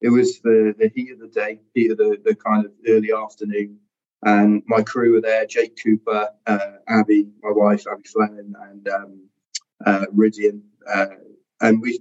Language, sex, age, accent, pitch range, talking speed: English, male, 30-49, British, 110-150 Hz, 180 wpm